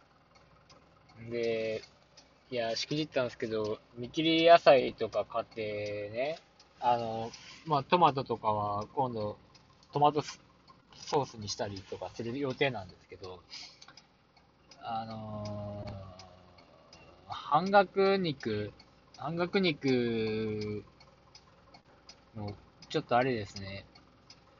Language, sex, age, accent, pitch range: Japanese, male, 20-39, native, 110-160 Hz